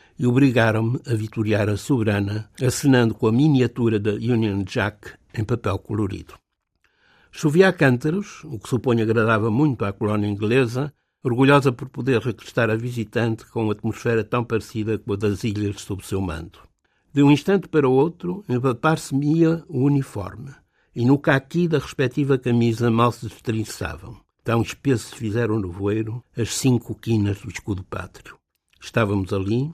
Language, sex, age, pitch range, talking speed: Portuguese, male, 60-79, 105-135 Hz, 160 wpm